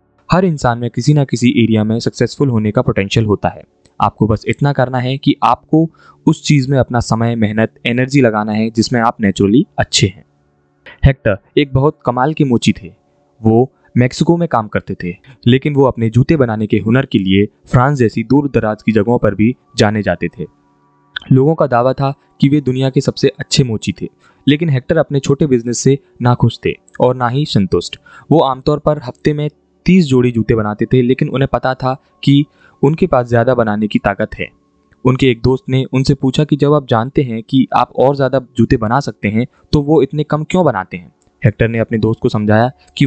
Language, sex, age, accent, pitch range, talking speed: Hindi, male, 20-39, native, 115-140 Hz, 205 wpm